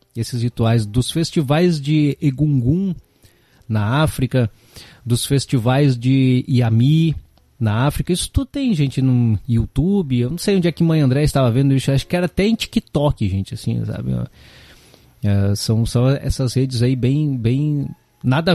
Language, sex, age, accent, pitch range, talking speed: Portuguese, male, 20-39, Brazilian, 120-165 Hz, 150 wpm